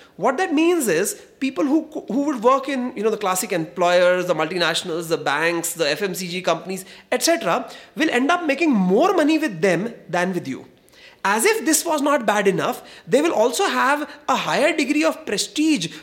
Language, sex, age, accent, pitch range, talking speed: English, male, 30-49, Indian, 180-290 Hz, 185 wpm